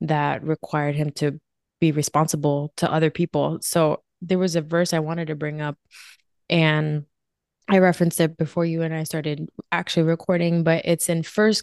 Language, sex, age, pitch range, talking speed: English, female, 20-39, 155-185 Hz, 175 wpm